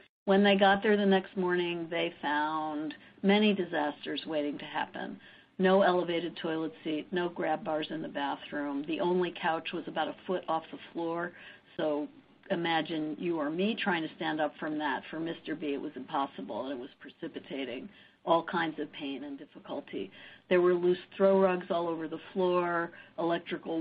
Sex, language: female, English